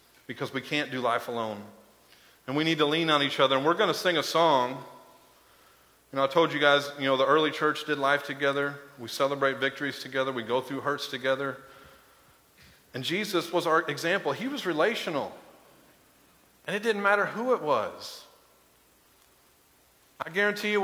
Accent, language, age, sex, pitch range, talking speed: American, English, 40-59, male, 140-190 Hz, 180 wpm